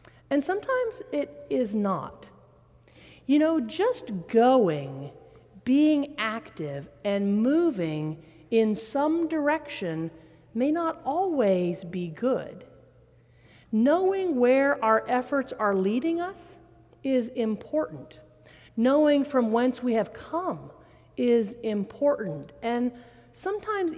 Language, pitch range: English, 210-290 Hz